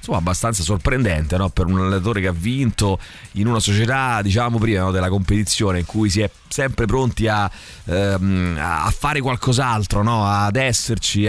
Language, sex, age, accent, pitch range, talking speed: Italian, male, 30-49, native, 95-115 Hz, 165 wpm